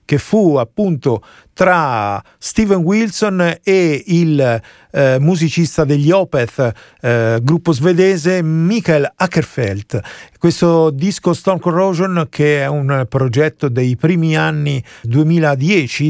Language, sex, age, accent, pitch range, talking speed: Italian, male, 40-59, native, 135-180 Hz, 110 wpm